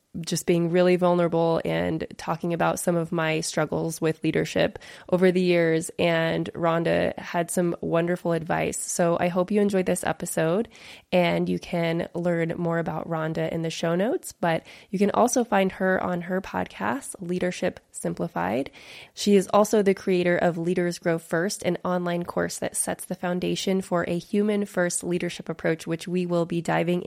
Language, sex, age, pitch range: English, female, 20-39, 170-195 Hz